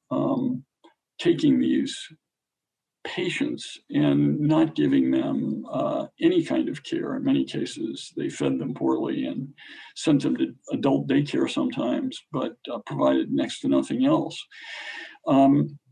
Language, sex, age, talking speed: English, male, 50-69, 130 wpm